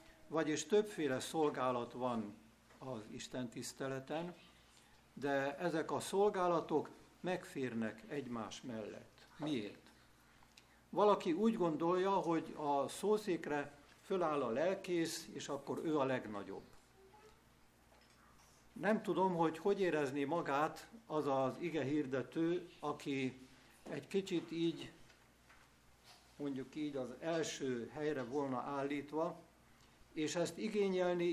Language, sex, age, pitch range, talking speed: Hungarian, male, 60-79, 130-170 Hz, 100 wpm